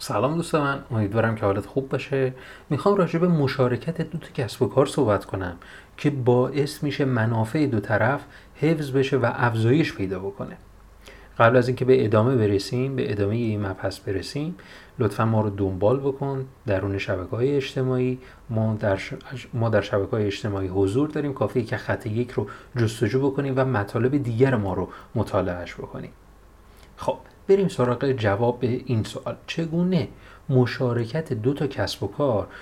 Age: 30-49